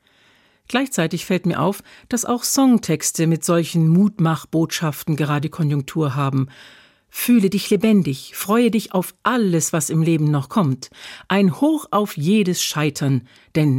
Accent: German